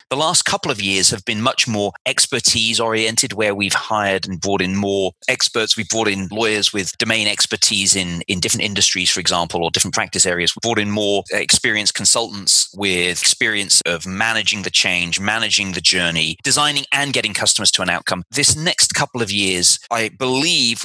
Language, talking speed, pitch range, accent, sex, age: English, 185 wpm, 100-120 Hz, British, male, 30-49